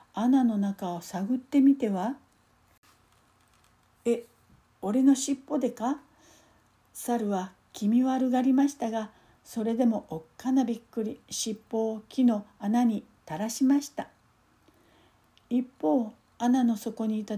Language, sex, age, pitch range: Japanese, female, 60-79, 210-260 Hz